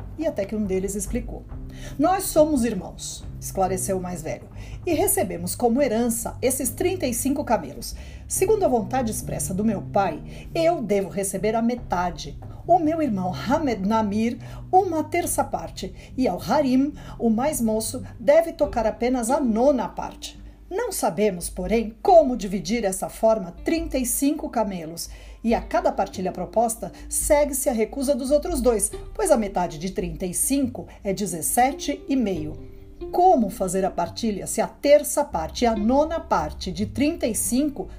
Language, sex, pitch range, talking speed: Portuguese, female, 195-290 Hz, 150 wpm